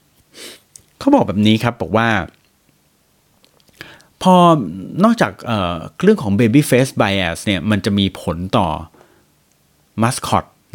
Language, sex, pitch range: Thai, male, 100-150 Hz